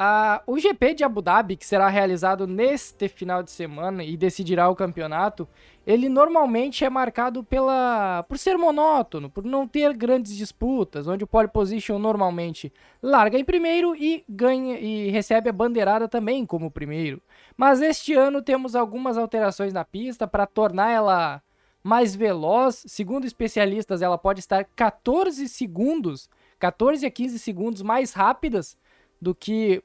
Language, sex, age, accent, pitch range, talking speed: Portuguese, male, 20-39, Brazilian, 195-255 Hz, 145 wpm